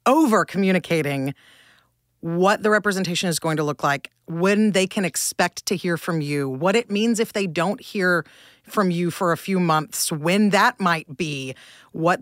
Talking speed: 175 wpm